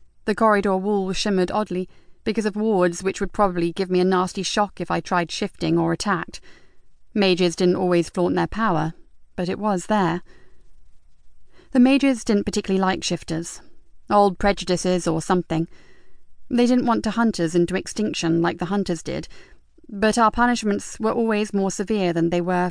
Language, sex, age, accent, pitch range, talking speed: English, female, 30-49, British, 175-205 Hz, 170 wpm